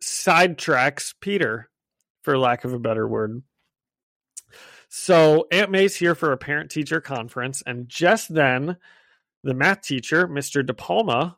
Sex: male